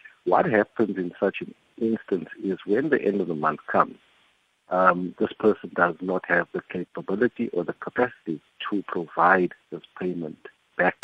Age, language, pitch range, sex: 50-69, English, 90-105 Hz, male